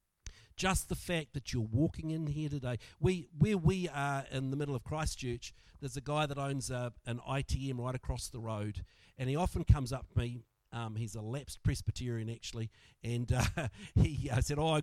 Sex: male